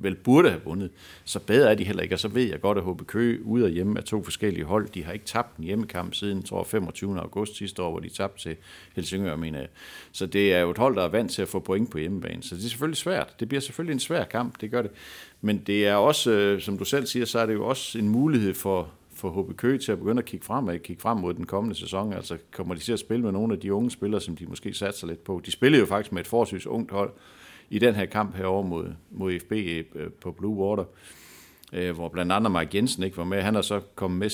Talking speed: 265 wpm